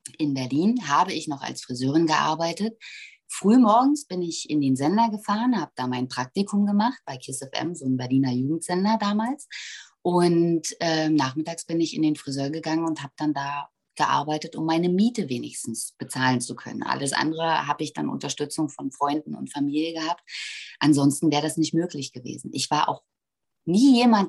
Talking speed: 175 wpm